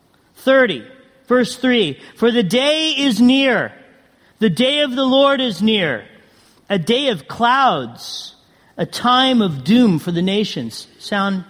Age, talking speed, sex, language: 40-59, 140 wpm, male, English